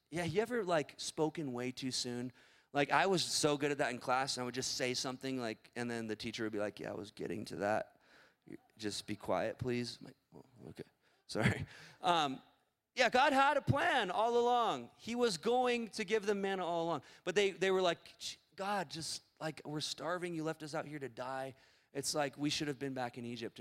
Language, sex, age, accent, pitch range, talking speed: English, male, 30-49, American, 125-170 Hz, 225 wpm